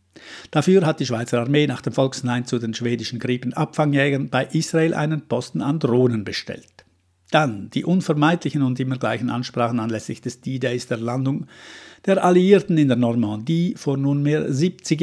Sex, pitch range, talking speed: male, 120-150 Hz, 155 wpm